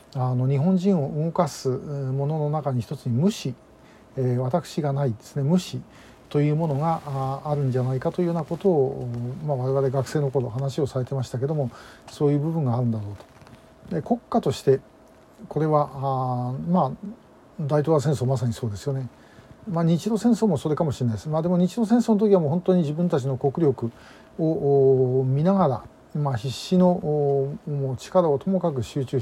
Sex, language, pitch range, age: male, Japanese, 130-165 Hz, 50-69